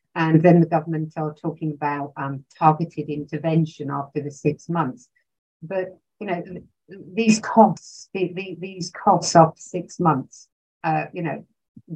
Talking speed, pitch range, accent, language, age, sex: 150 wpm, 155-185 Hz, British, English, 50-69, female